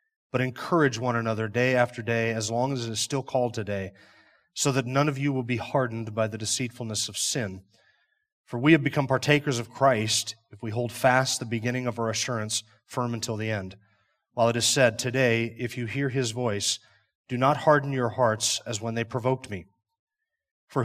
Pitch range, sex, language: 115-145 Hz, male, English